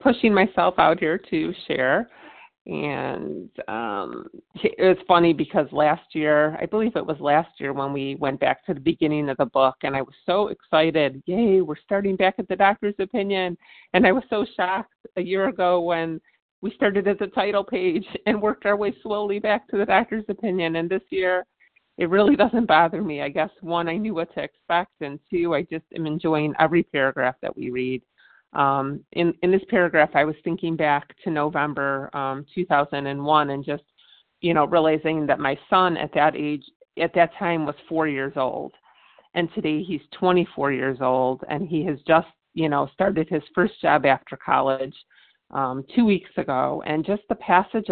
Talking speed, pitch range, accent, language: 190 wpm, 145-195 Hz, American, English